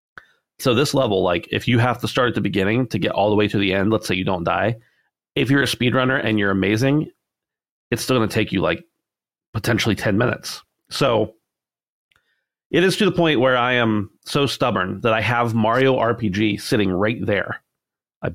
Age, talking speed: 30-49, 205 wpm